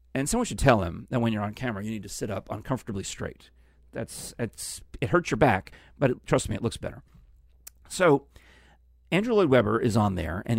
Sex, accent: male, American